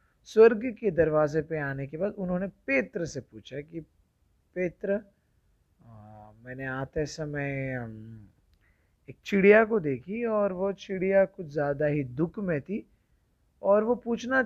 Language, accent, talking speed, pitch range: Hindi, native, 135 wpm, 135-200 Hz